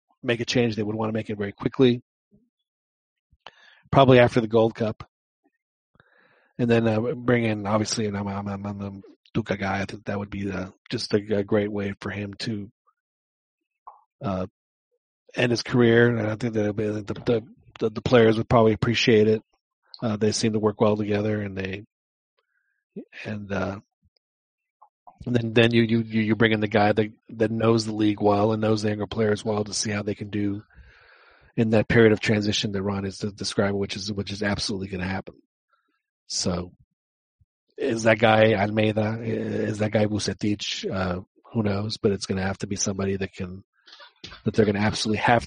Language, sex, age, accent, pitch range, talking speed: English, male, 40-59, American, 100-115 Hz, 190 wpm